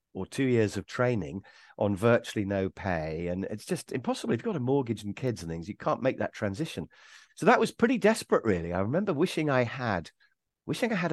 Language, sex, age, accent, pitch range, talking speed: English, male, 50-69, British, 100-145 Hz, 220 wpm